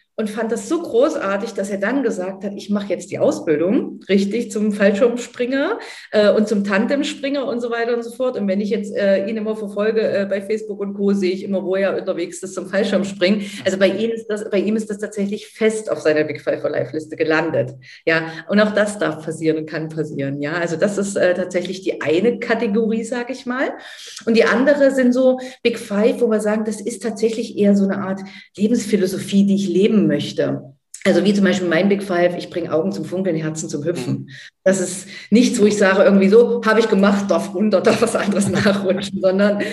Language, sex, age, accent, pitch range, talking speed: German, female, 40-59, German, 180-225 Hz, 215 wpm